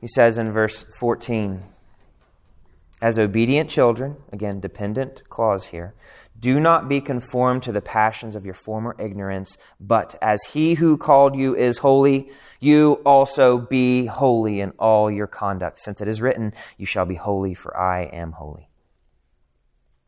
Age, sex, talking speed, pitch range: 30-49, male, 150 wpm, 100-160 Hz